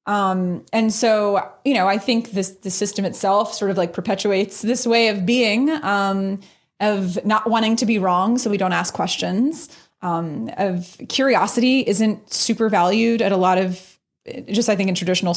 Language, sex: English, female